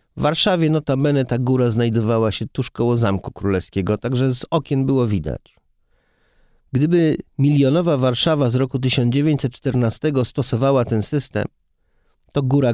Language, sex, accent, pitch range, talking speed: Polish, male, native, 105-135 Hz, 125 wpm